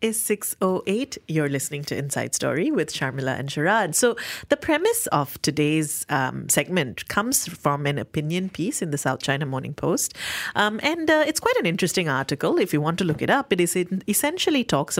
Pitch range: 150-200 Hz